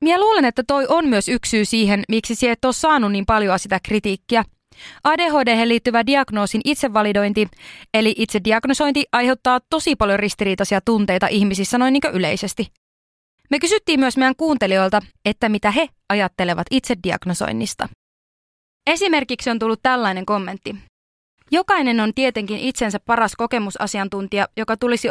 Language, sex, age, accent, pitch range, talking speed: Finnish, female, 20-39, native, 200-250 Hz, 135 wpm